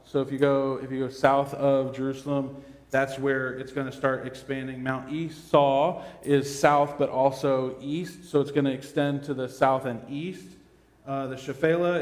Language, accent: English, American